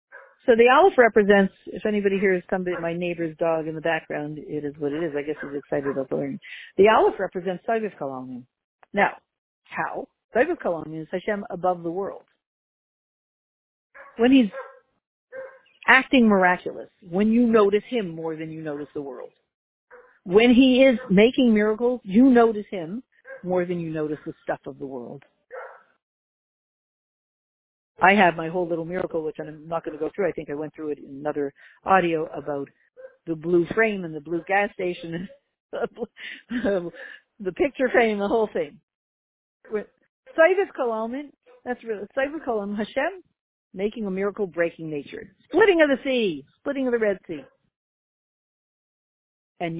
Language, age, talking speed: English, 50-69, 160 wpm